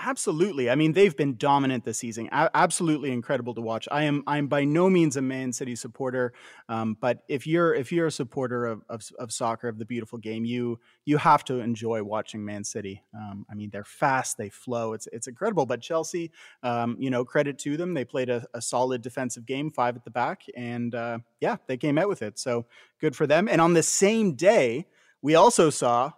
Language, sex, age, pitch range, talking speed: English, male, 30-49, 120-150 Hz, 220 wpm